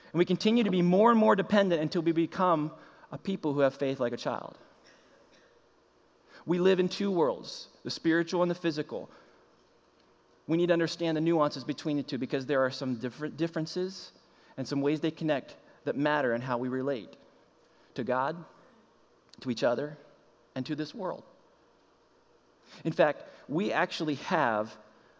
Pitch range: 130-170 Hz